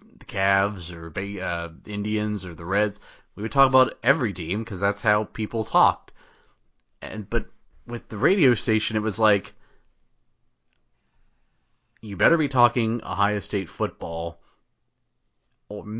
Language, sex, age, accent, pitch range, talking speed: English, male, 30-49, American, 95-145 Hz, 135 wpm